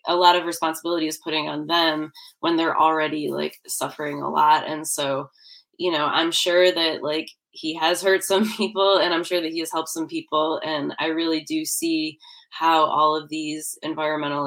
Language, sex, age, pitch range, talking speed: English, female, 20-39, 155-185 Hz, 195 wpm